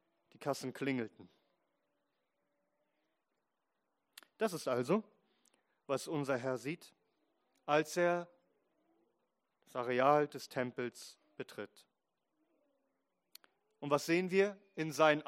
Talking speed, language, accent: 85 wpm, German, German